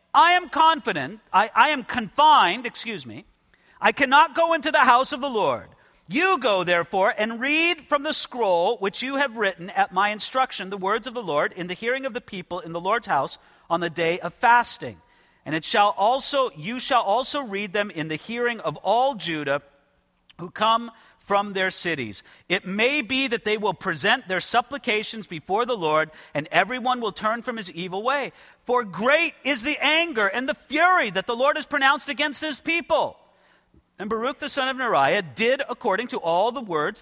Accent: American